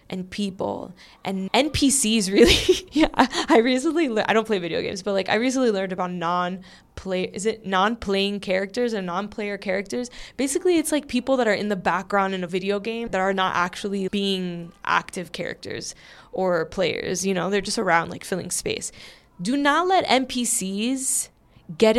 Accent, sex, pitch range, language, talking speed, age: American, female, 185-220 Hz, English, 170 wpm, 10-29